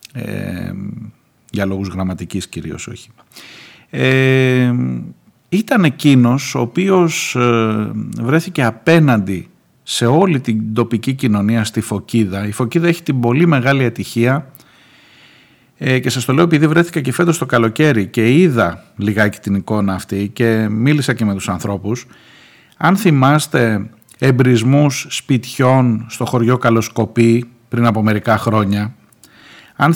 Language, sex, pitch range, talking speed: Greek, male, 110-145 Hz, 125 wpm